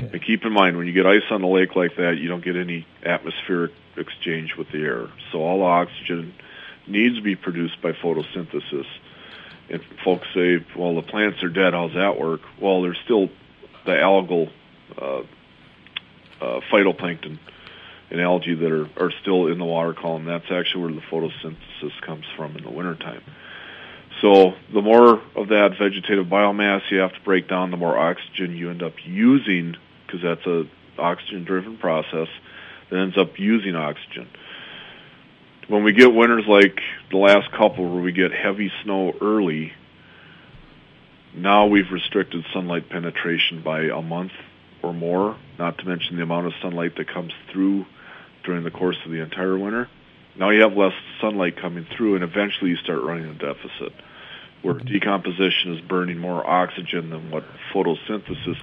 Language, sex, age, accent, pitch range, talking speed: English, male, 40-59, American, 85-100 Hz, 170 wpm